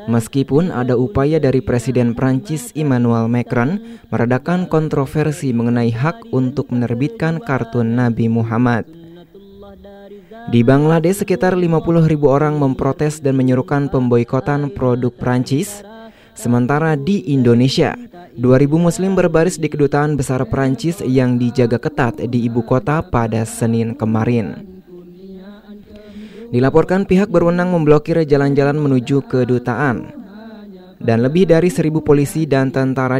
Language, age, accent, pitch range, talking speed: Indonesian, 20-39, native, 125-175 Hz, 110 wpm